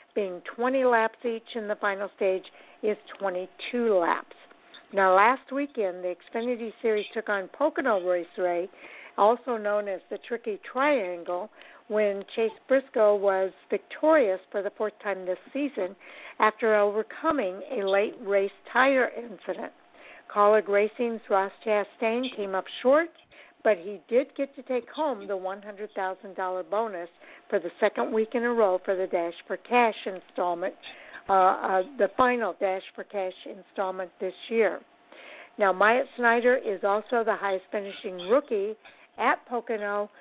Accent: American